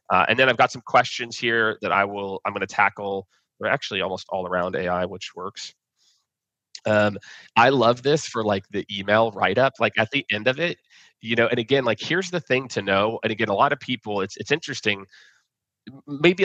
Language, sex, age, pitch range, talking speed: English, male, 30-49, 100-130 Hz, 215 wpm